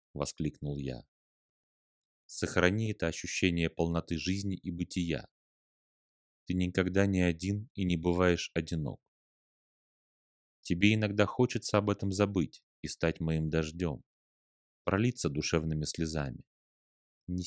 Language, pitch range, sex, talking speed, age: Russian, 80-95 Hz, male, 105 wpm, 30-49